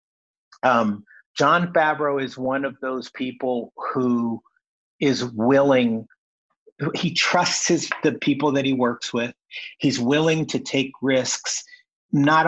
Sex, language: male, English